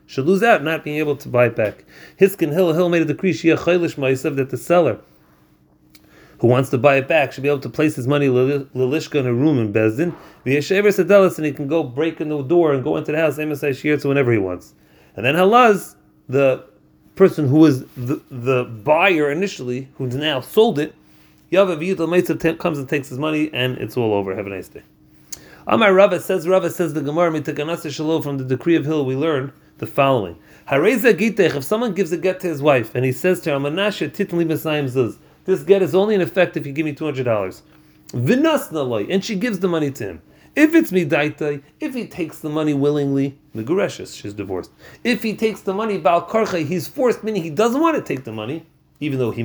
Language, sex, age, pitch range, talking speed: English, male, 30-49, 135-185 Hz, 200 wpm